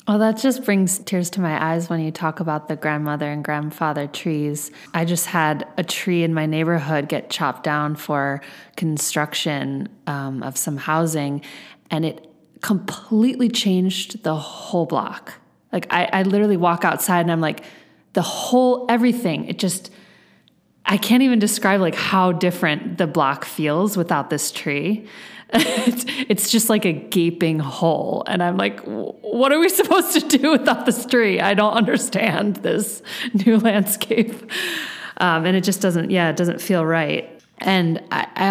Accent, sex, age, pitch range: American, female, 20-39, 155-210 Hz